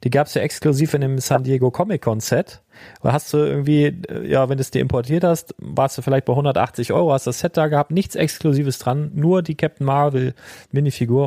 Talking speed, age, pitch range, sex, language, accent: 215 wpm, 40-59, 125-150 Hz, male, German, German